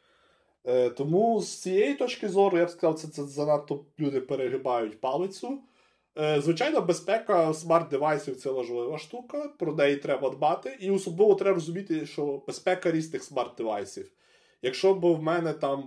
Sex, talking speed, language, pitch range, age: male, 150 wpm, Ukrainian, 125-170 Hz, 20-39